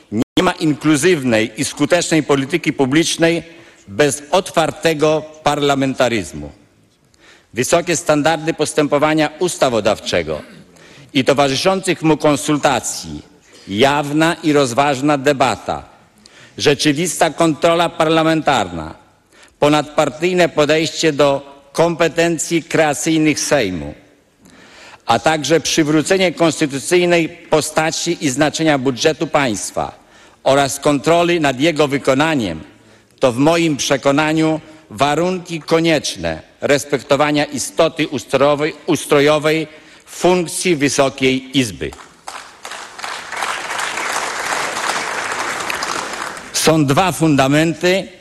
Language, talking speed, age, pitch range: Polish, 75 wpm, 50-69, 140-165 Hz